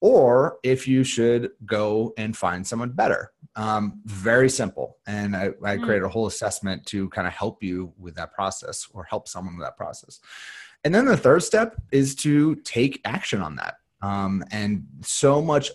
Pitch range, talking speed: 100-125 Hz, 185 wpm